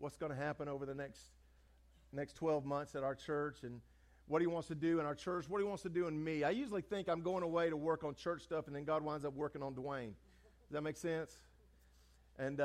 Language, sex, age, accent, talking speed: English, male, 50-69, American, 250 wpm